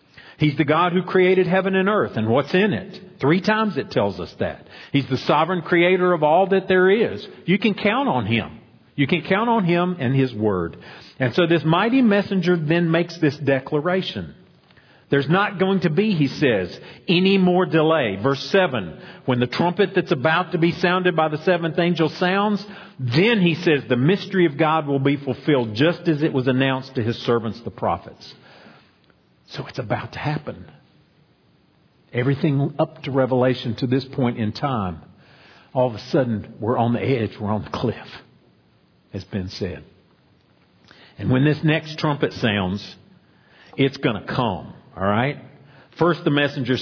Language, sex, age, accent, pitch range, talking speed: English, male, 50-69, American, 125-175 Hz, 175 wpm